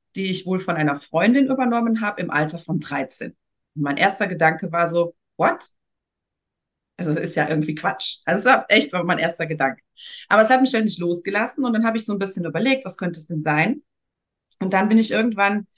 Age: 30-49